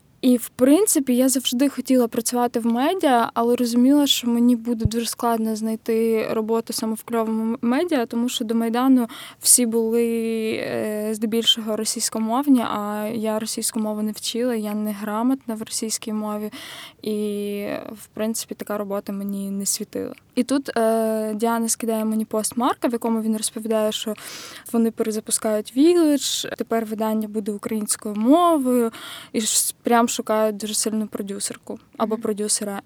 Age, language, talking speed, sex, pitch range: 20-39, Ukrainian, 145 wpm, female, 220-265 Hz